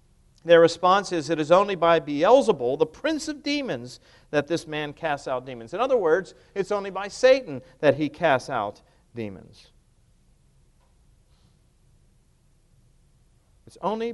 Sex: male